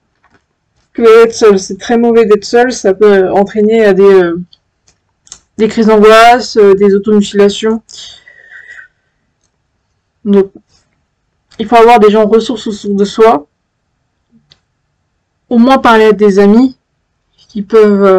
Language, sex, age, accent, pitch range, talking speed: French, female, 20-39, French, 195-235 Hz, 120 wpm